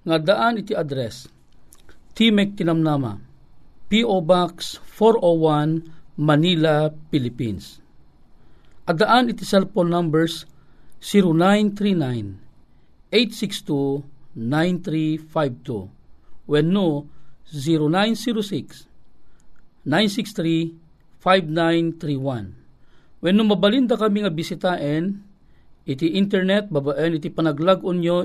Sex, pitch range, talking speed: male, 150-190 Hz, 70 wpm